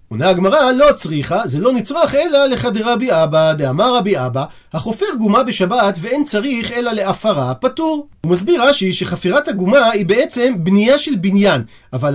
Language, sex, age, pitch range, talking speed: Hebrew, male, 40-59, 180-250 Hz, 165 wpm